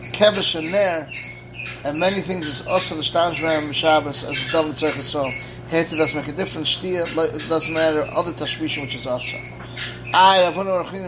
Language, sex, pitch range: English, male, 150-185 Hz